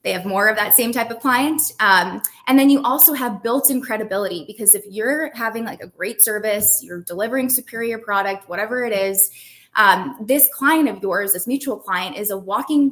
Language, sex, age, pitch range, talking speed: English, female, 20-39, 195-245 Hz, 205 wpm